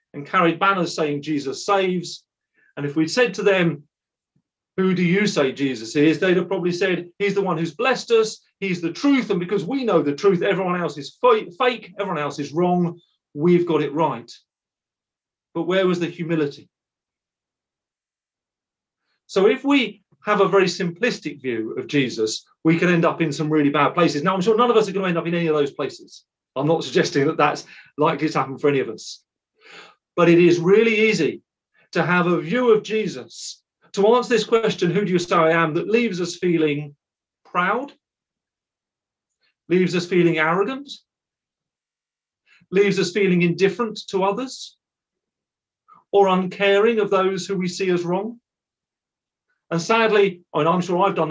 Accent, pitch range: British, 160-200 Hz